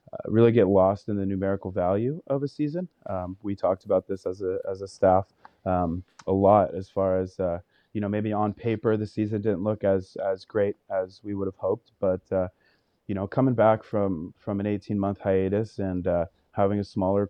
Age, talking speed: 30-49, 215 wpm